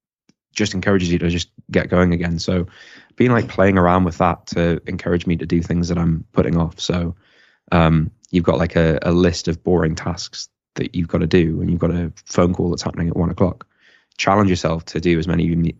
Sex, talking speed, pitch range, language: male, 220 wpm, 85-95 Hz, English